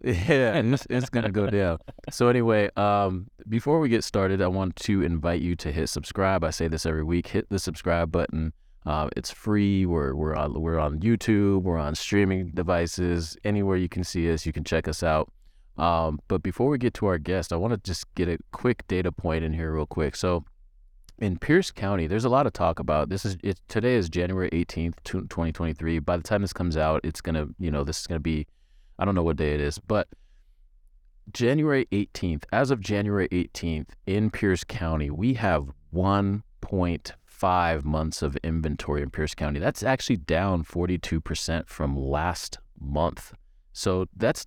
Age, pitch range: 20-39, 80-100 Hz